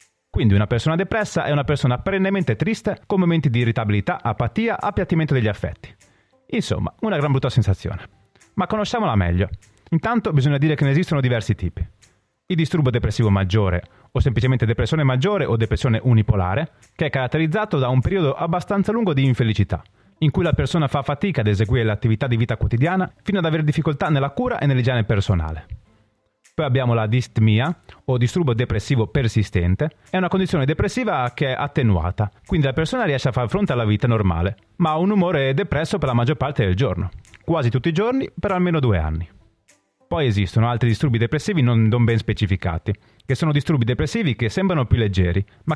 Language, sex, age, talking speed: Italian, male, 30-49, 175 wpm